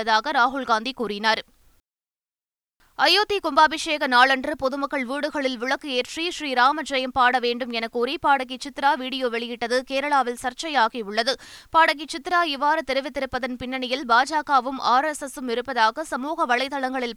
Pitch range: 240-295 Hz